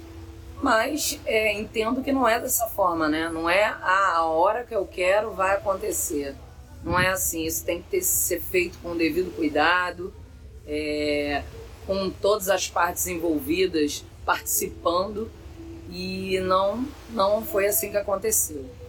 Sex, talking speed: female, 145 wpm